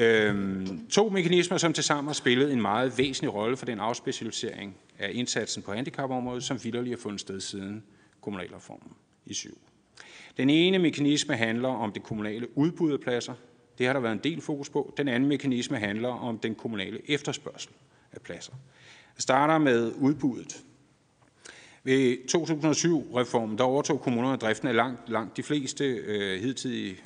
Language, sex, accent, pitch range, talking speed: Danish, male, native, 110-145 Hz, 160 wpm